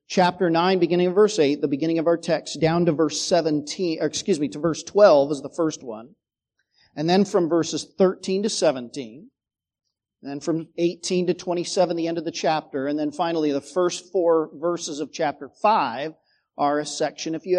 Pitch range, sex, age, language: 150-190 Hz, male, 40-59, English